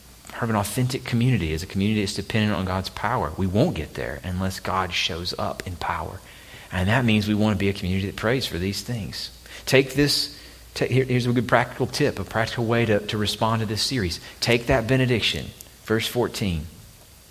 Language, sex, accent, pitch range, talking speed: English, male, American, 95-110 Hz, 210 wpm